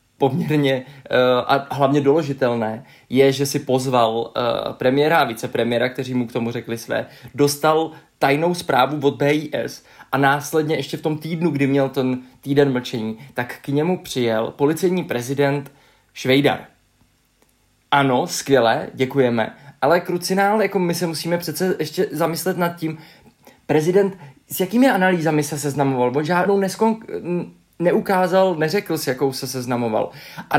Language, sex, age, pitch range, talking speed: Czech, male, 20-39, 135-160 Hz, 140 wpm